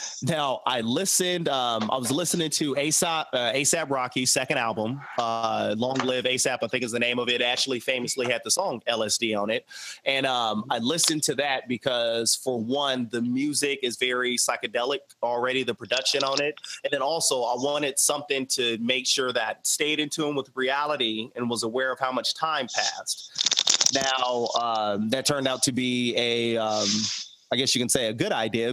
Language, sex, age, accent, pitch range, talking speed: English, male, 30-49, American, 120-155 Hz, 190 wpm